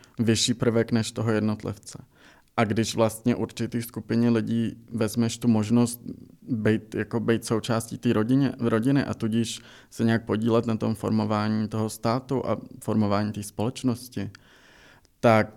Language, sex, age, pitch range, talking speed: Czech, male, 20-39, 105-115 Hz, 135 wpm